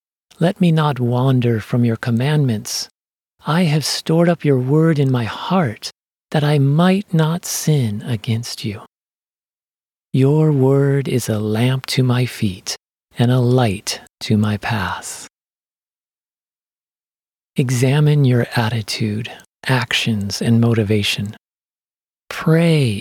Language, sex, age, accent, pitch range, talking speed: English, male, 40-59, American, 110-150 Hz, 115 wpm